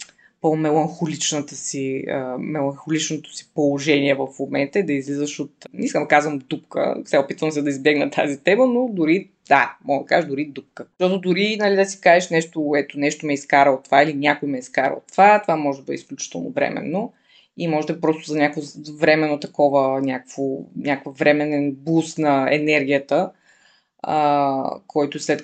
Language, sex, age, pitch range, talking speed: Bulgarian, female, 20-39, 140-170 Hz, 170 wpm